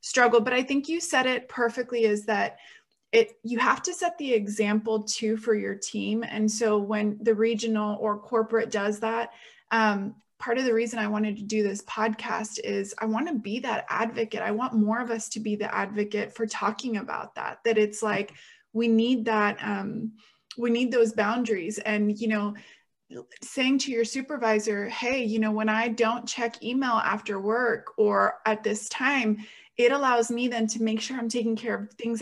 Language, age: English, 20-39